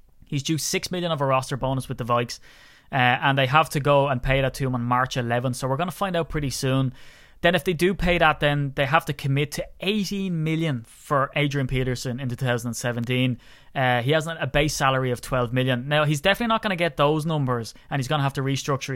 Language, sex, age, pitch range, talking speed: English, male, 20-39, 125-150 Hz, 245 wpm